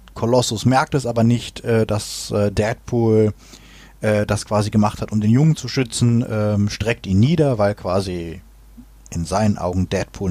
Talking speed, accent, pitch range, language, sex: 170 wpm, German, 100-120 Hz, German, male